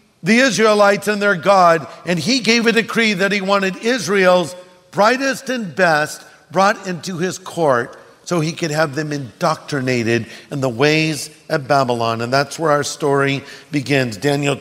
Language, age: English, 50-69